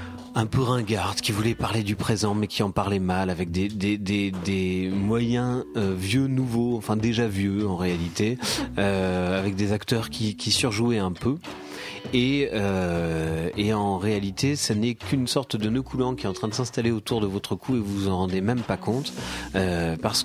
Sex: male